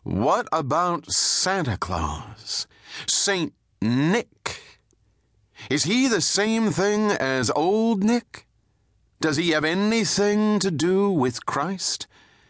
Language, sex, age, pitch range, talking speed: English, male, 40-59, 110-180 Hz, 105 wpm